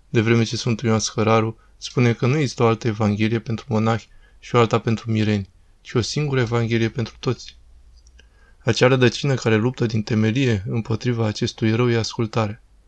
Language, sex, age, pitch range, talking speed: Romanian, male, 20-39, 110-125 Hz, 170 wpm